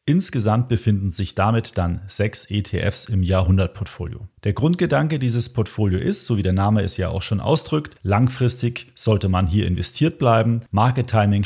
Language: German